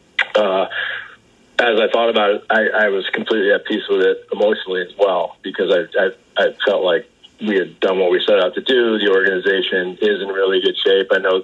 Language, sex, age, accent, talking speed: English, male, 30-49, American, 215 wpm